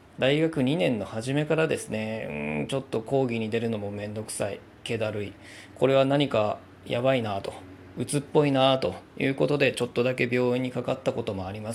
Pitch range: 105-135 Hz